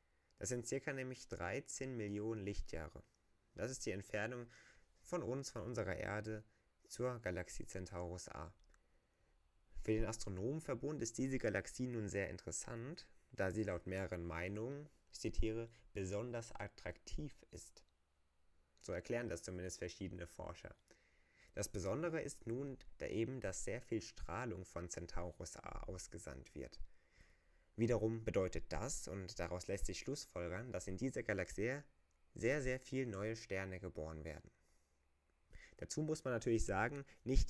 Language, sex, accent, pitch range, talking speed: German, male, German, 85-115 Hz, 135 wpm